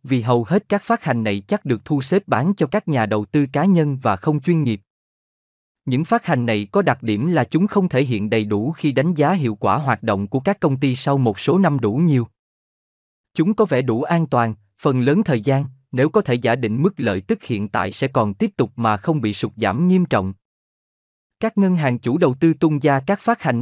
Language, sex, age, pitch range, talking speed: Vietnamese, male, 20-39, 115-165 Hz, 245 wpm